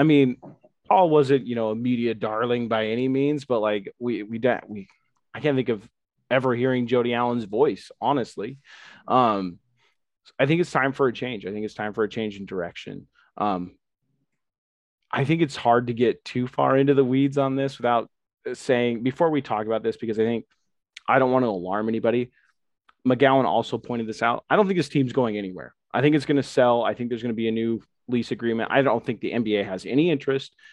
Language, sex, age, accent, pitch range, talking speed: English, male, 20-39, American, 105-125 Hz, 215 wpm